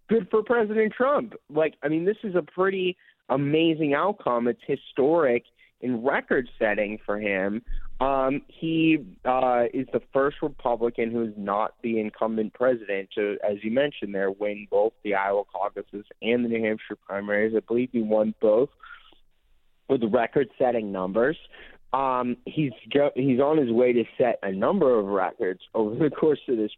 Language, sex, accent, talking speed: English, male, American, 160 wpm